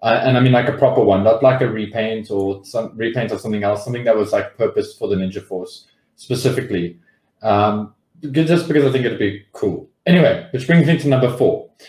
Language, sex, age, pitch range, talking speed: English, male, 20-39, 115-145 Hz, 215 wpm